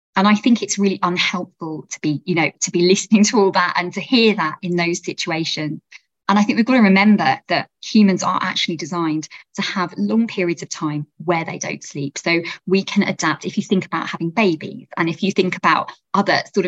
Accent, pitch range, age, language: British, 170-205 Hz, 20-39, English